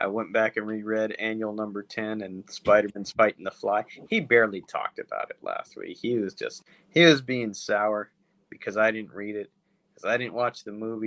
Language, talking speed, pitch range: English, 205 wpm, 110-135 Hz